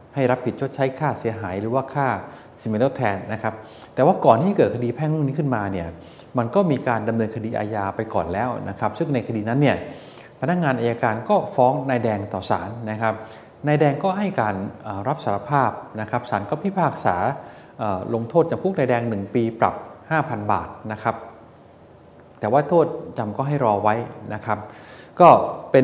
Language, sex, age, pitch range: Thai, male, 20-39, 110-140 Hz